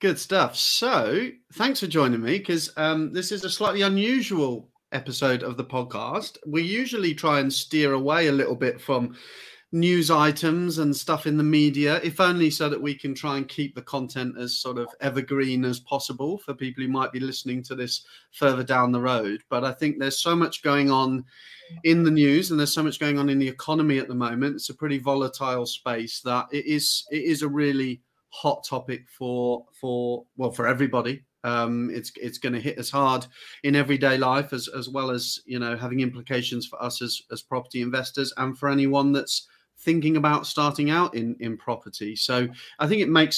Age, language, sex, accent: 30-49, English, male, British